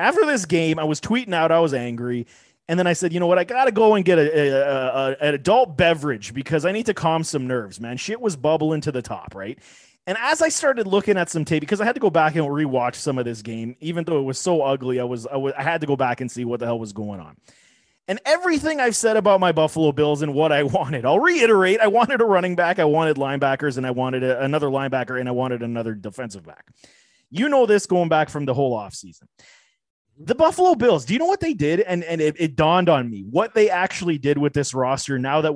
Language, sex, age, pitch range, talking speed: English, male, 30-49, 135-180 Hz, 265 wpm